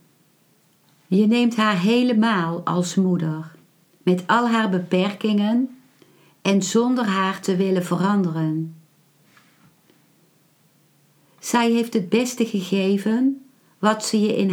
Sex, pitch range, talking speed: female, 175-220 Hz, 105 wpm